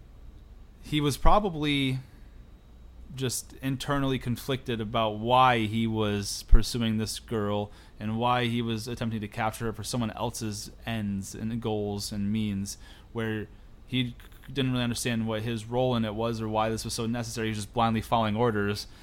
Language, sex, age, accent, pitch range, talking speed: English, male, 20-39, American, 105-125 Hz, 165 wpm